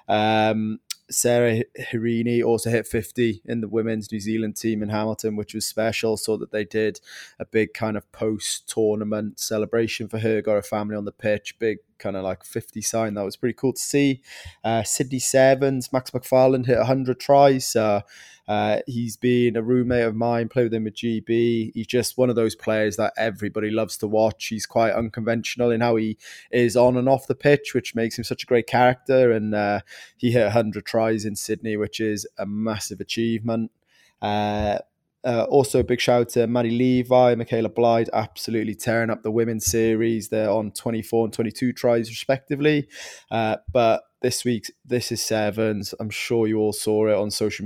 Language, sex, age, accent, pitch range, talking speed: English, male, 20-39, British, 110-120 Hz, 190 wpm